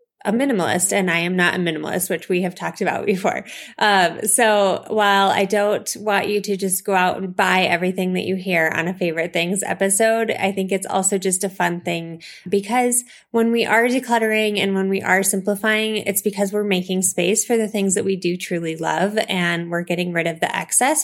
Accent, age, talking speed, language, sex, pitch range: American, 20-39, 210 wpm, English, female, 185-220 Hz